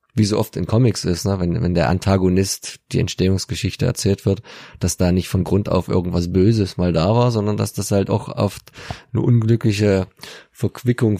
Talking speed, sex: 180 wpm, male